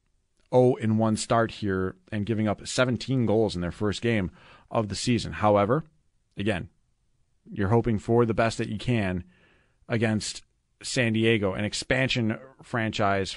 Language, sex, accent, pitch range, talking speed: English, male, American, 100-145 Hz, 145 wpm